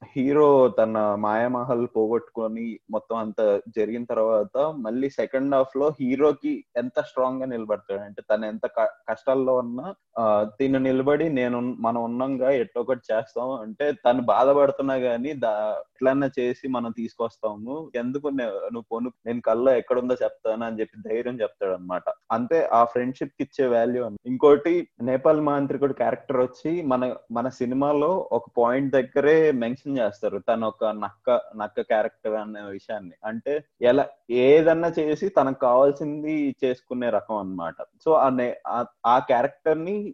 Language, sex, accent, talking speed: Telugu, male, native, 130 wpm